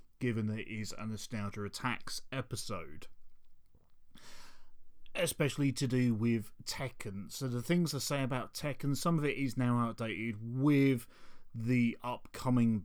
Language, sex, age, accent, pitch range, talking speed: English, male, 30-49, British, 110-140 Hz, 135 wpm